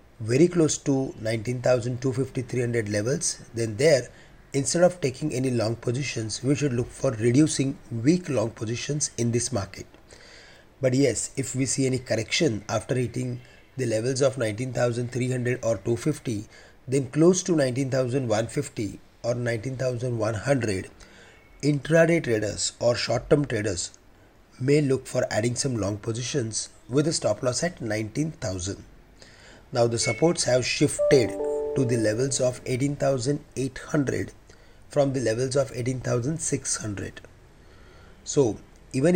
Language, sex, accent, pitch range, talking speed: English, male, Indian, 110-140 Hz, 125 wpm